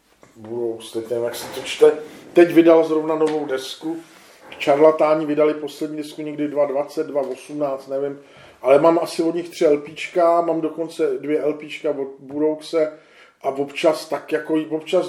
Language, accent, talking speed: Czech, native, 145 wpm